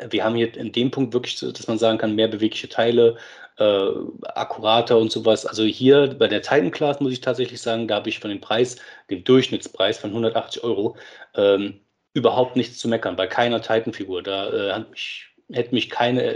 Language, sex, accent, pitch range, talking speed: German, male, German, 110-140 Hz, 200 wpm